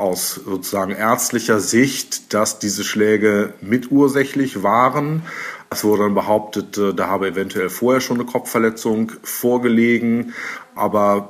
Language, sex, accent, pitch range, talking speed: German, male, German, 100-125 Hz, 115 wpm